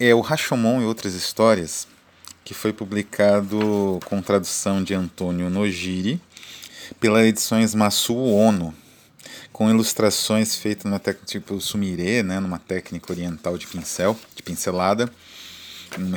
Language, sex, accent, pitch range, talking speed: Portuguese, male, Brazilian, 90-110 Hz, 130 wpm